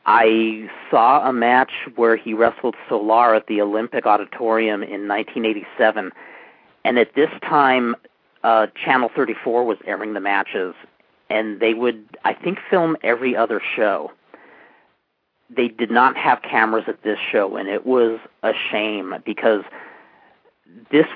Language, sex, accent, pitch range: English, male, American, 110-140 Hz